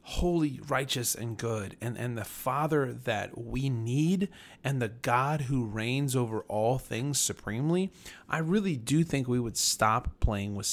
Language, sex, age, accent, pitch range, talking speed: English, male, 30-49, American, 115-155 Hz, 160 wpm